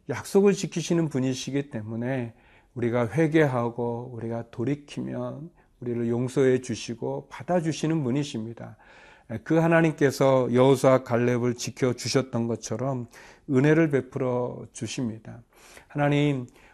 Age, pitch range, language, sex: 40-59, 120-145 Hz, Korean, male